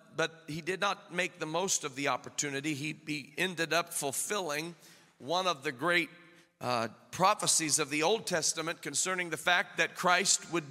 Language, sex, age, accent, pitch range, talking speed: English, male, 40-59, American, 150-195 Hz, 175 wpm